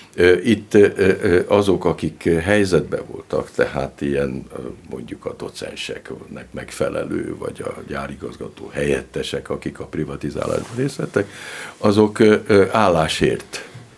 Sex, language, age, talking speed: male, Hungarian, 60-79, 90 wpm